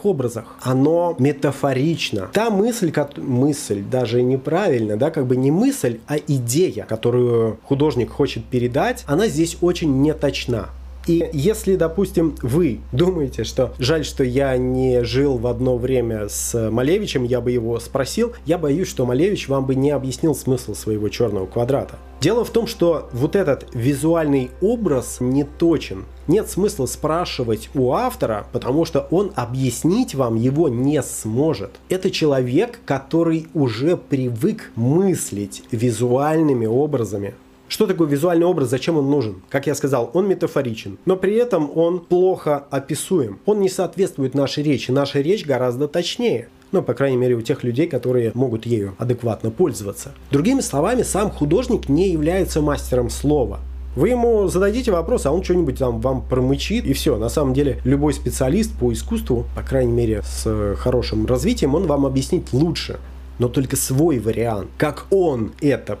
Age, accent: 30-49, native